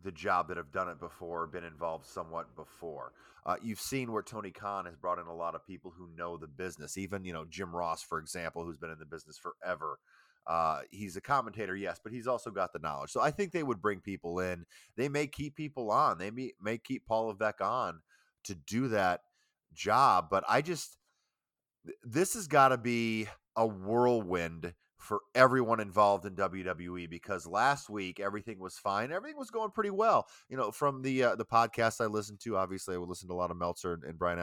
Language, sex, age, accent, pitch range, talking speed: English, male, 30-49, American, 90-120 Hz, 215 wpm